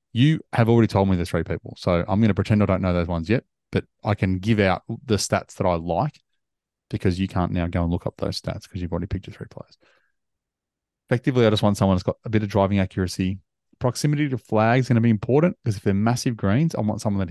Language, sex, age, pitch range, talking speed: English, male, 30-49, 95-125 Hz, 260 wpm